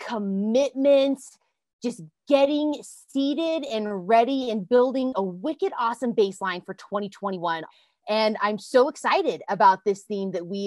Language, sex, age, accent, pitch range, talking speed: English, female, 20-39, American, 190-255 Hz, 130 wpm